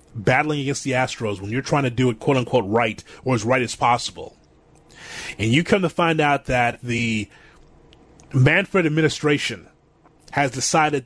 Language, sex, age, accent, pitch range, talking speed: English, male, 30-49, American, 125-160 Hz, 165 wpm